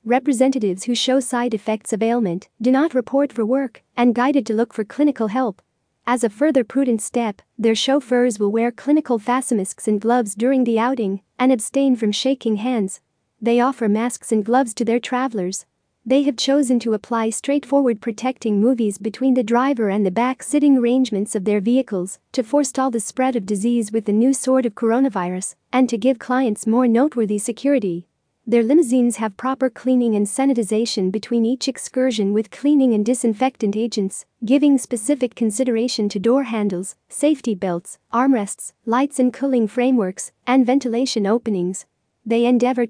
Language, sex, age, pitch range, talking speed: English, female, 40-59, 220-260 Hz, 165 wpm